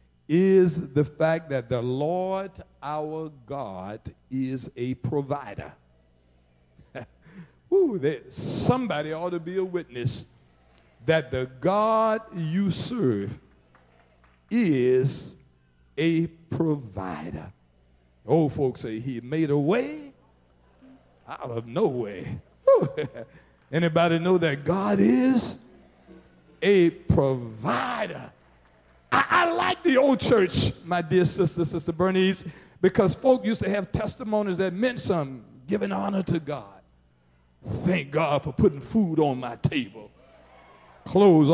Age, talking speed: 60-79, 110 wpm